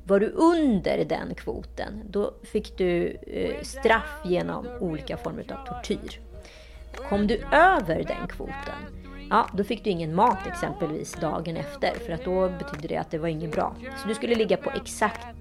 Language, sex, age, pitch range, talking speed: Swedish, female, 30-49, 165-235 Hz, 175 wpm